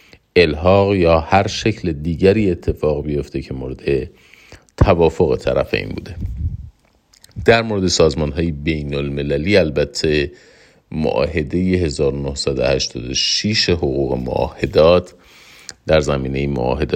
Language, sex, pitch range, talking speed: Persian, male, 70-85 Hz, 95 wpm